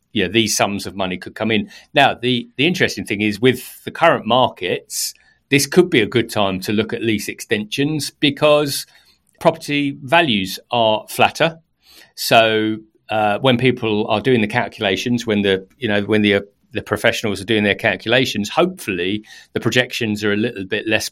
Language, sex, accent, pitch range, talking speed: English, male, British, 105-130 Hz, 180 wpm